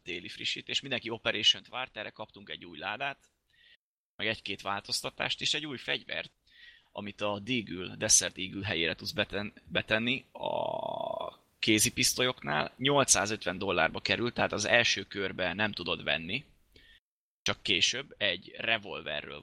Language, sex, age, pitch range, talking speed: Hungarian, male, 20-39, 100-125 Hz, 125 wpm